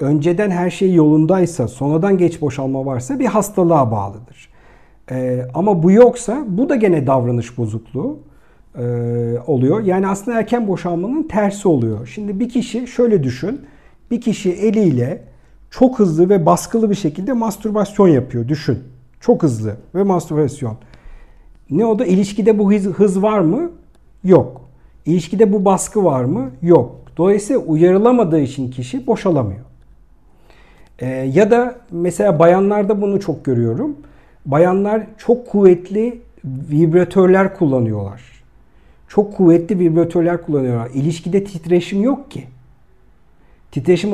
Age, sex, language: 50-69, male, Turkish